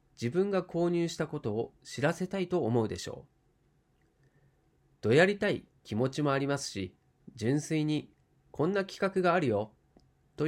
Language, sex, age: Japanese, male, 40-59